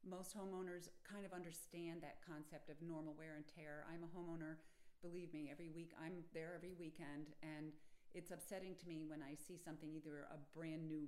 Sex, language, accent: female, English, American